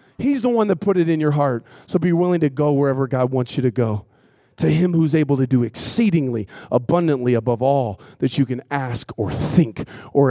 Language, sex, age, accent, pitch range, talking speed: English, male, 40-59, American, 120-145 Hz, 215 wpm